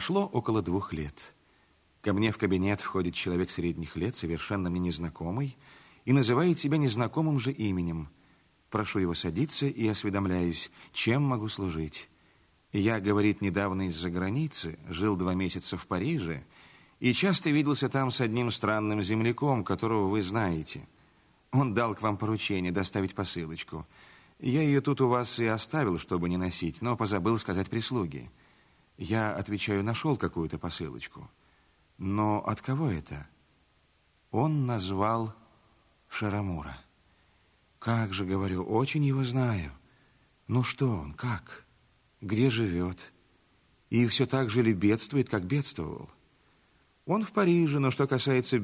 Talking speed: 135 wpm